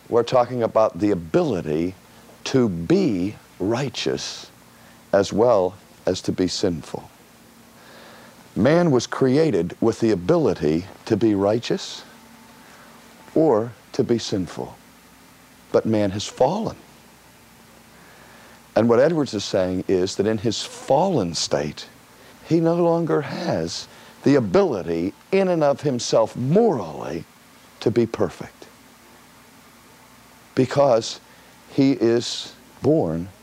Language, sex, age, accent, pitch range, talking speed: English, male, 50-69, American, 100-135 Hz, 110 wpm